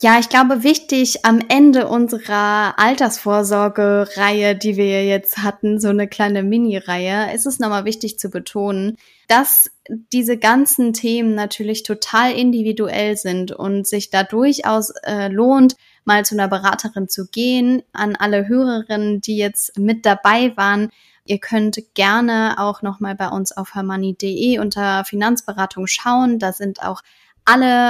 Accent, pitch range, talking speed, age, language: German, 200-225 Hz, 140 wpm, 10-29, German